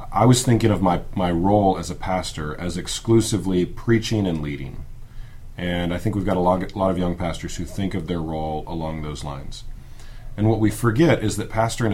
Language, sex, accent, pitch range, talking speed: English, male, American, 85-110 Hz, 210 wpm